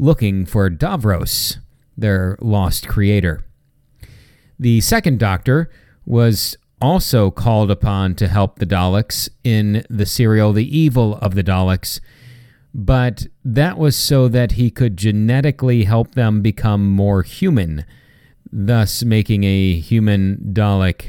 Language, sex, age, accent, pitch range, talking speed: English, male, 40-59, American, 100-135 Hz, 120 wpm